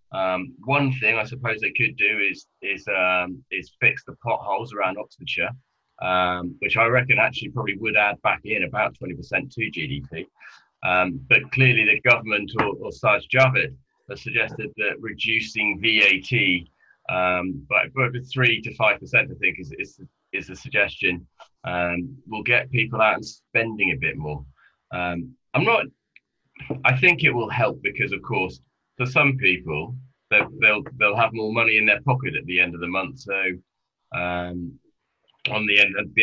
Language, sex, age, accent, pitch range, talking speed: English, male, 20-39, British, 90-125 Hz, 175 wpm